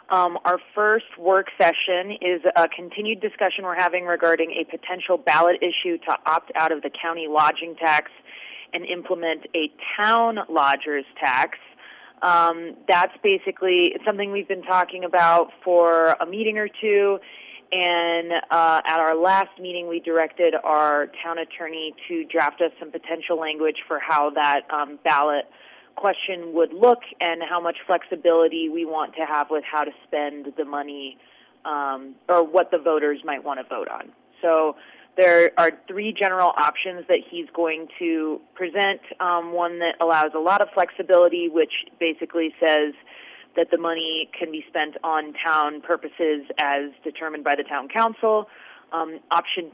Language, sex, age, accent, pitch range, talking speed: English, female, 30-49, American, 160-185 Hz, 160 wpm